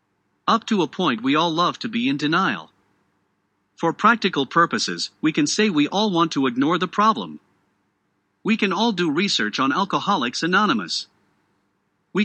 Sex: male